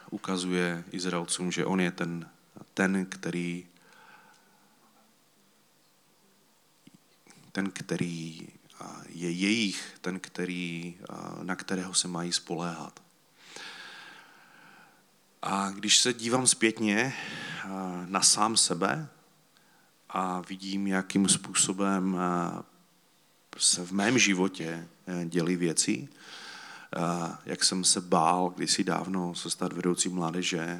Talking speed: 90 wpm